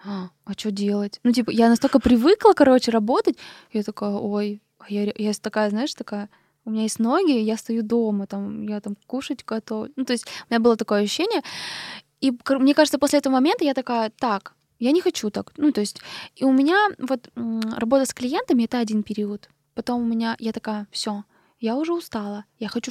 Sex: female